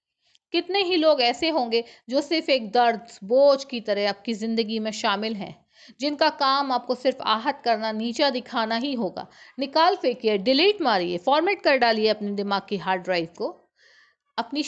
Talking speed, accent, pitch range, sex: 170 wpm, native, 220-285 Hz, female